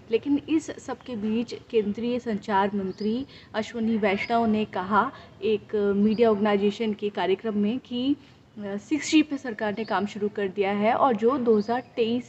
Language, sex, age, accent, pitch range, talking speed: Hindi, female, 20-39, native, 205-245 Hz, 150 wpm